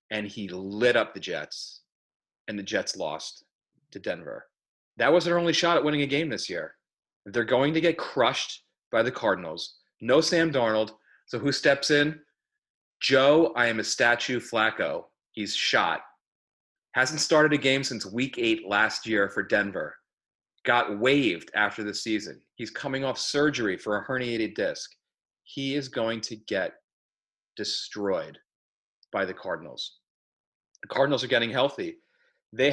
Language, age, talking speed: English, 30-49, 155 wpm